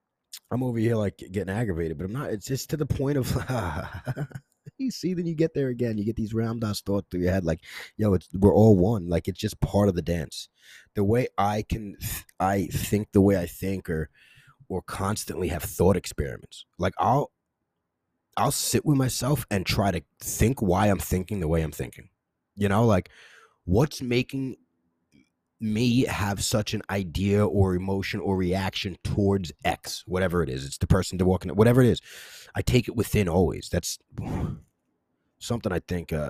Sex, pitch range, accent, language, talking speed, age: male, 85-110 Hz, American, English, 190 wpm, 20-39